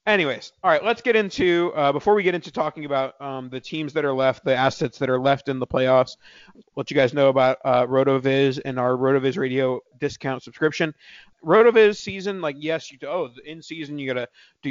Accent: American